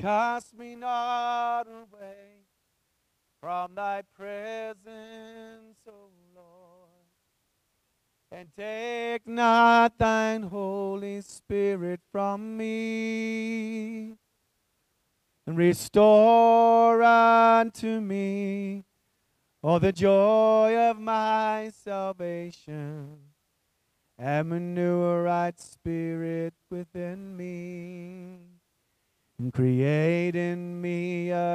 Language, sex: English, male